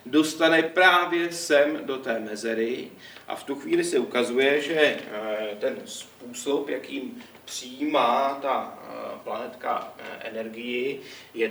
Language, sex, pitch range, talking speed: Czech, male, 110-130 Hz, 110 wpm